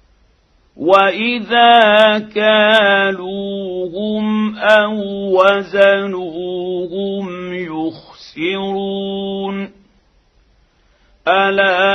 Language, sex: Arabic, male